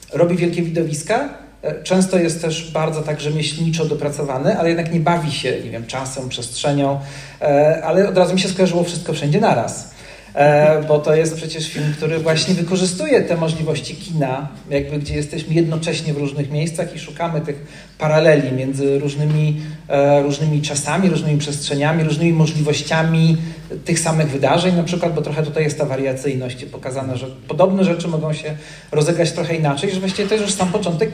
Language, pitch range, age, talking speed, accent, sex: Polish, 145-175 Hz, 40-59, 165 wpm, native, male